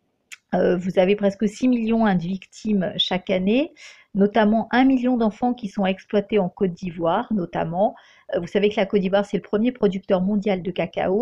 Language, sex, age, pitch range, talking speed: French, female, 50-69, 190-225 Hz, 175 wpm